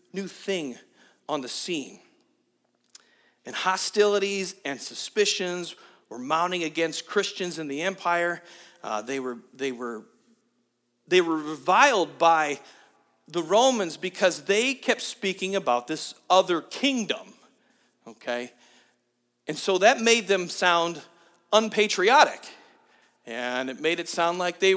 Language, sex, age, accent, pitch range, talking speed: English, male, 50-69, American, 145-195 Hz, 120 wpm